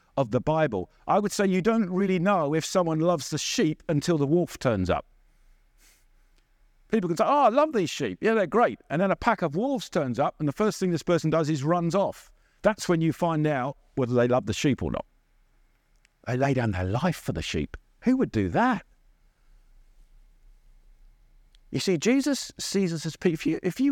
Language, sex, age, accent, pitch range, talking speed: English, male, 50-69, British, 120-185 Hz, 210 wpm